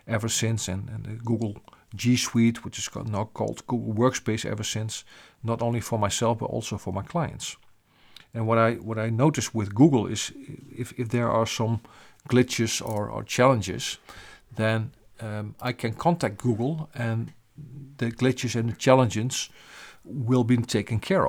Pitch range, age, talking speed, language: 105-125 Hz, 50-69, 170 wpm, English